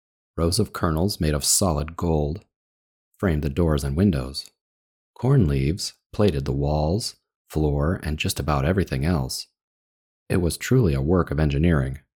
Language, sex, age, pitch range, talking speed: English, male, 30-49, 70-85 Hz, 150 wpm